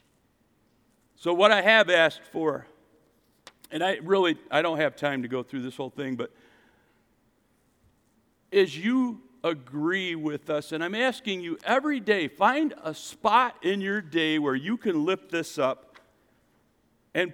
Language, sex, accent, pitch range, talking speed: English, male, American, 165-230 Hz, 150 wpm